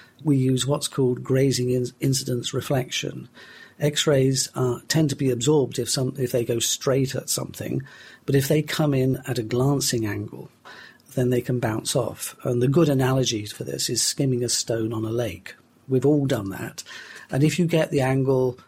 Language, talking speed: English, 180 wpm